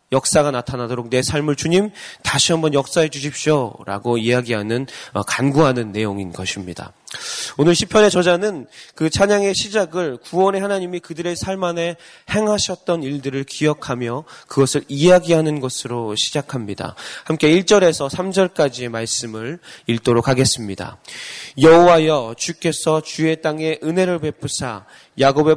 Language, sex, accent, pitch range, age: Korean, male, native, 135-180 Hz, 20-39